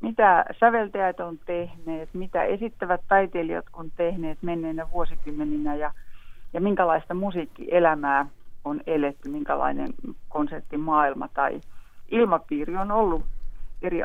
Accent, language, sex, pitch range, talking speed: native, Finnish, female, 160-205 Hz, 100 wpm